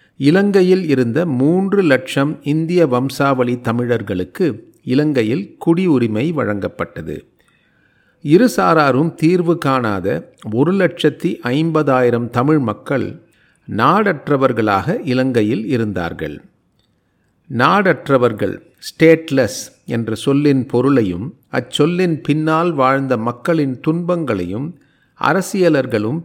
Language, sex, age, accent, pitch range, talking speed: Tamil, male, 40-59, native, 125-165 Hz, 70 wpm